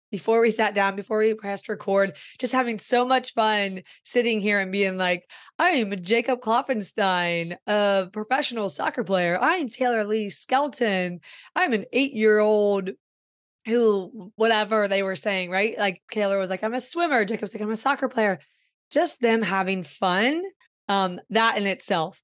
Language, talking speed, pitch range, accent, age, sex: English, 165 wpm, 195-240 Hz, American, 20-39, female